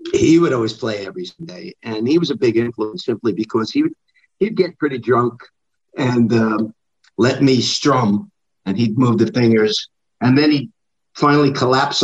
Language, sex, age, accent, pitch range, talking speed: English, male, 50-69, American, 110-160 Hz, 175 wpm